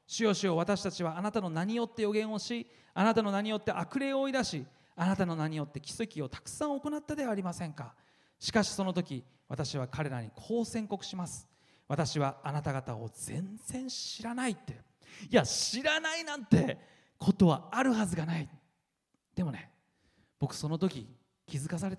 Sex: male